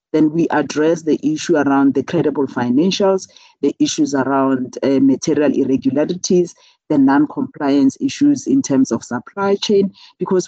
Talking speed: 135 wpm